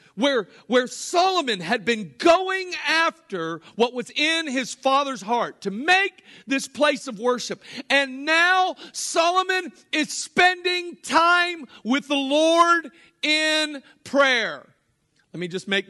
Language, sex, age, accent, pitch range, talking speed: English, male, 50-69, American, 195-280 Hz, 130 wpm